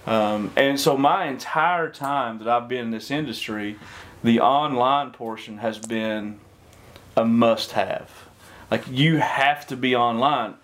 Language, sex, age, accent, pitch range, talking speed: English, male, 30-49, American, 105-125 Hz, 140 wpm